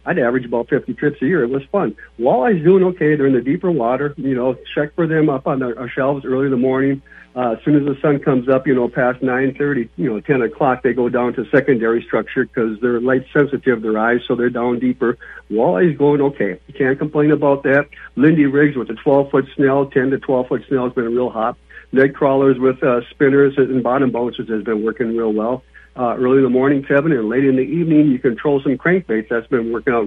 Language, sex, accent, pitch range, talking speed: English, male, American, 120-140 Hz, 240 wpm